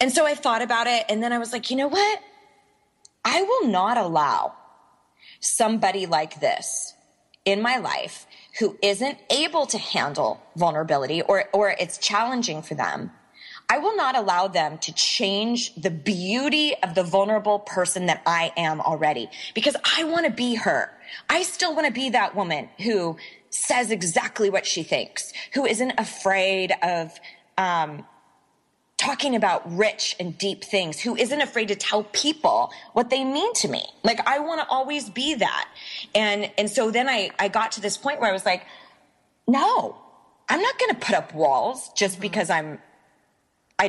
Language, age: English, 20-39